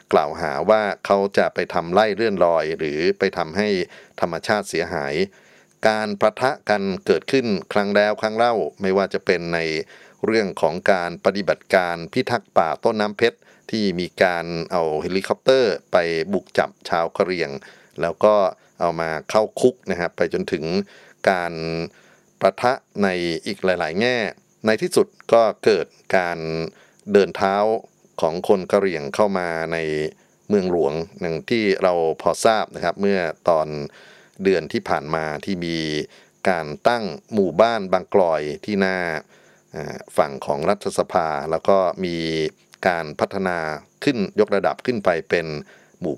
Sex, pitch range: male, 85-105 Hz